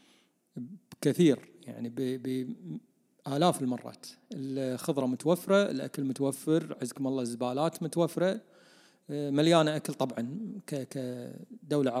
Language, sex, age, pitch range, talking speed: Arabic, male, 40-59, 135-195 Hz, 80 wpm